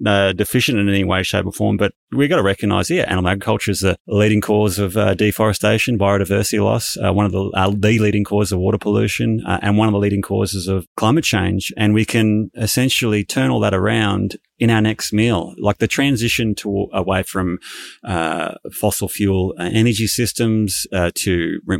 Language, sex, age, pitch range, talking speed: English, male, 30-49, 95-110 Hz, 215 wpm